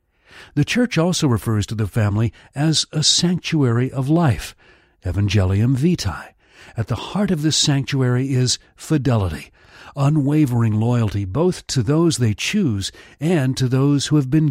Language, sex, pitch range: English, male, 105-150 Hz